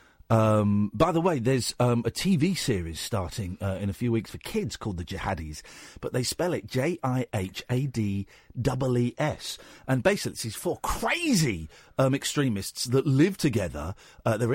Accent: British